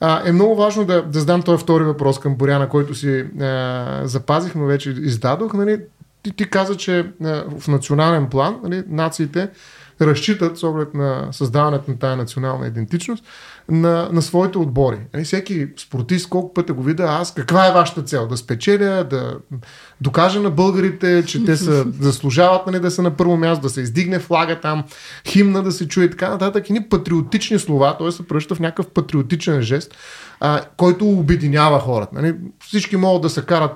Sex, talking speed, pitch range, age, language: male, 185 wpm, 140-185 Hz, 30-49, Bulgarian